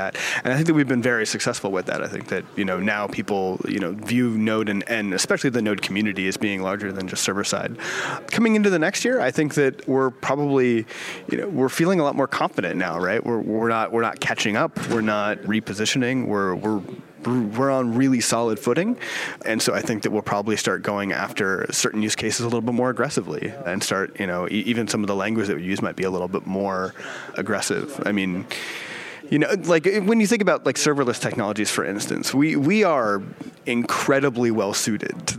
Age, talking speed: 30-49, 220 wpm